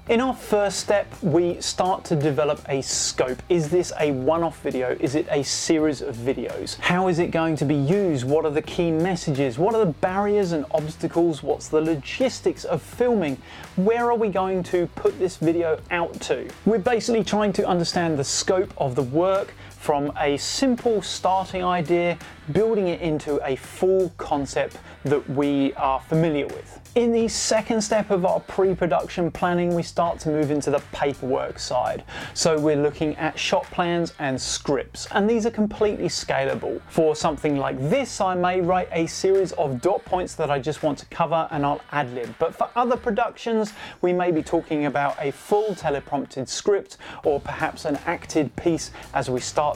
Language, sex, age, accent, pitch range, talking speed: English, male, 30-49, British, 150-195 Hz, 185 wpm